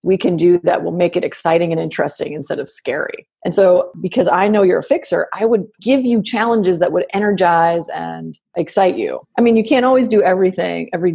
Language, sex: English, female